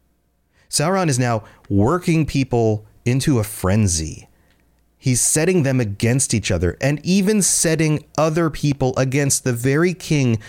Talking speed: 130 wpm